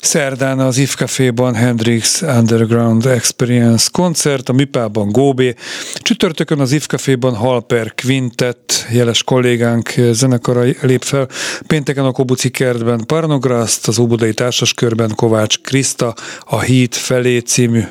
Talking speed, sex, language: 115 wpm, male, Hungarian